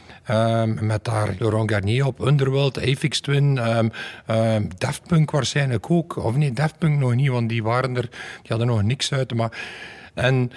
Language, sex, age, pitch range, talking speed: Dutch, male, 60-79, 120-150 Hz, 180 wpm